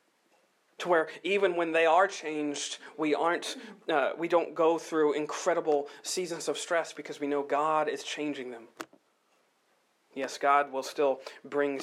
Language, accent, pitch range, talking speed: English, American, 145-205 Hz, 150 wpm